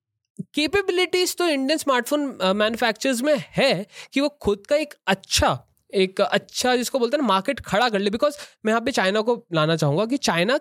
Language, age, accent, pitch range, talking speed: Hindi, 20-39, native, 175-270 Hz, 185 wpm